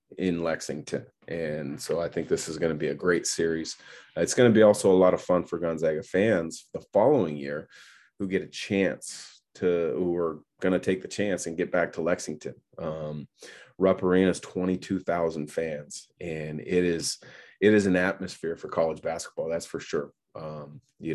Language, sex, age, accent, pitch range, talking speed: English, male, 30-49, American, 85-95 Hz, 195 wpm